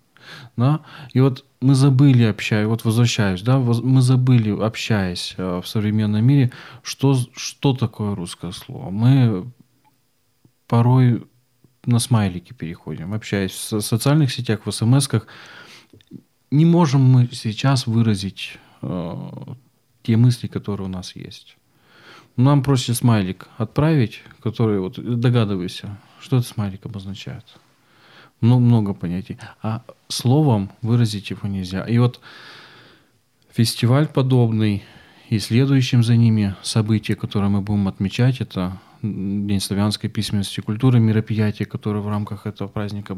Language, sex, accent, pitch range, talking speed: Russian, male, native, 105-125 Hz, 120 wpm